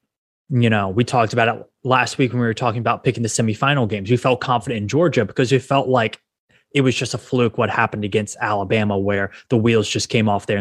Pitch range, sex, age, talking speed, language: 110-140 Hz, male, 20-39, 240 wpm, English